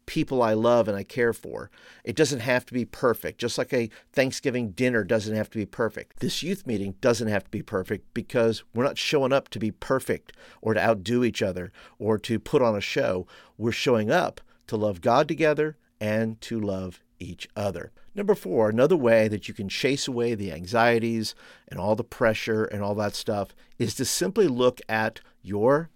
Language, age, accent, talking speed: English, 50-69, American, 200 wpm